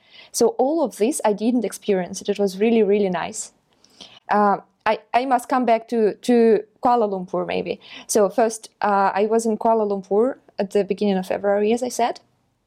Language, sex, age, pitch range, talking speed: Russian, female, 20-39, 205-245 Hz, 185 wpm